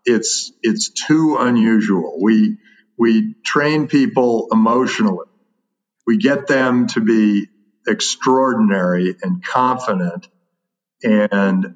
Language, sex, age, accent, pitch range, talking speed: English, male, 50-69, American, 105-145 Hz, 90 wpm